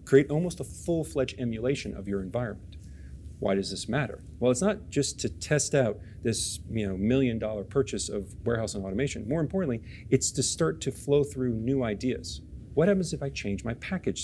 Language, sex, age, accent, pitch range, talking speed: English, male, 40-59, American, 105-140 Hz, 185 wpm